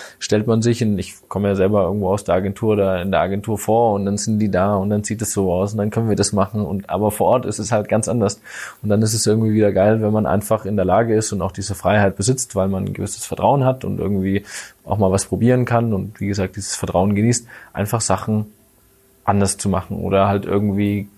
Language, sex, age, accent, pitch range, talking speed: German, male, 20-39, German, 95-110 Hz, 250 wpm